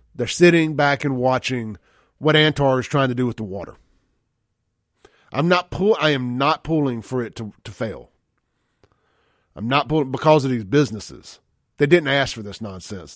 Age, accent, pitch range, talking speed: 30-49, American, 120-170 Hz, 180 wpm